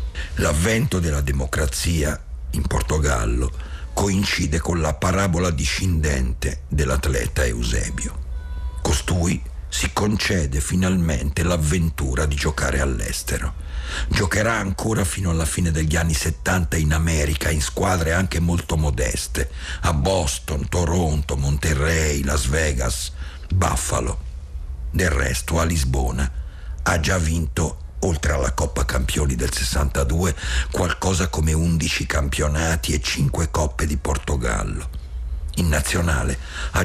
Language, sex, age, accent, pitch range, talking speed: Italian, male, 60-79, native, 70-85 Hz, 110 wpm